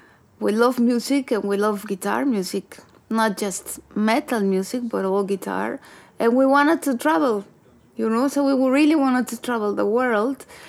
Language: English